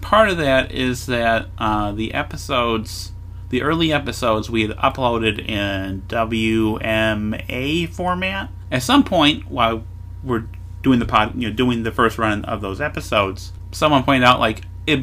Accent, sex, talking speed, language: American, male, 155 wpm, English